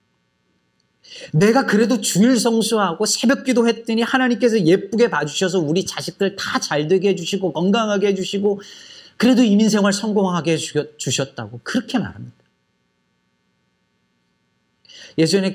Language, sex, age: Korean, male, 40-59